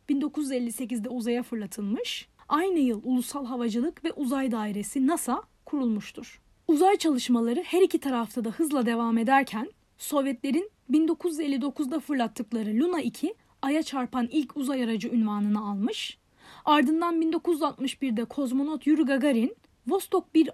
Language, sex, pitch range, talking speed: Turkish, female, 235-295 Hz, 115 wpm